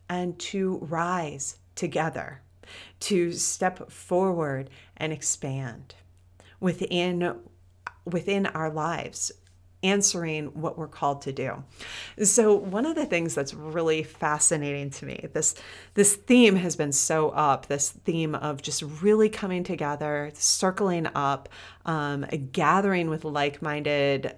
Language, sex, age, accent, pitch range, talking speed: English, female, 30-49, American, 145-185 Hz, 125 wpm